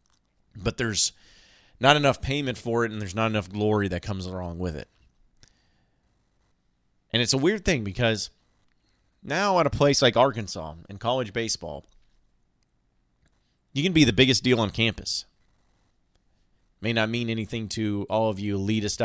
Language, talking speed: English, 155 wpm